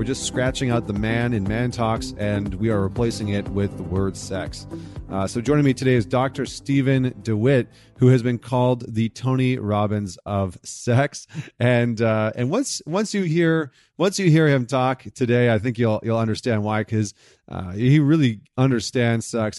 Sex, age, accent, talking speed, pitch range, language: male, 30-49, American, 185 wpm, 100-125 Hz, English